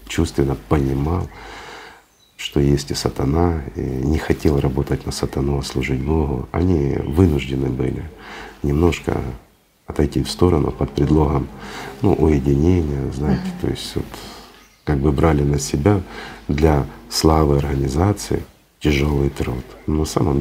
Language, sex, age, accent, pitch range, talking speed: Russian, male, 50-69, native, 65-80 Hz, 125 wpm